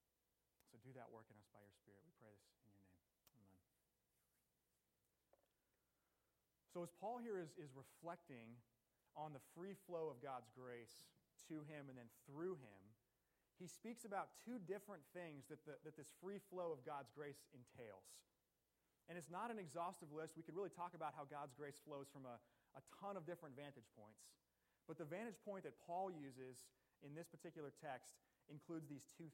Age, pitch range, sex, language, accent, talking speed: 30-49, 125-170 Hz, male, English, American, 180 wpm